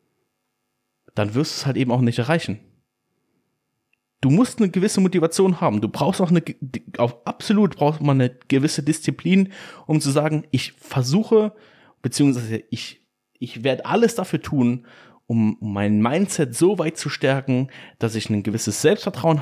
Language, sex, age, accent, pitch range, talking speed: German, male, 30-49, German, 120-160 Hz, 155 wpm